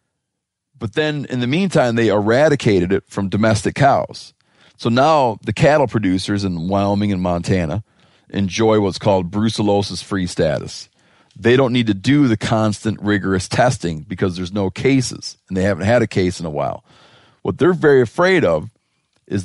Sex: male